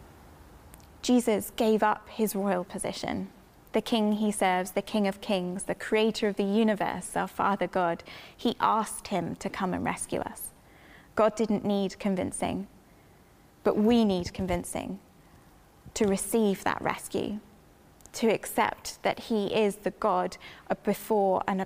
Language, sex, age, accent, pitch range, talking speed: English, female, 20-39, British, 195-225 Hz, 140 wpm